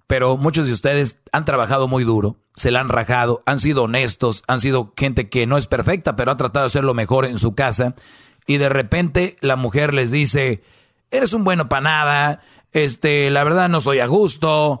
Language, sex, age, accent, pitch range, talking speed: Spanish, male, 40-59, Mexican, 120-150 Hz, 205 wpm